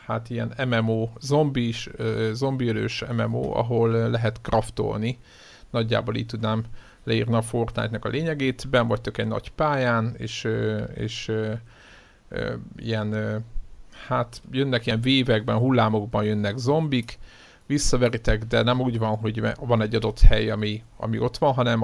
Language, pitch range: Hungarian, 110-125 Hz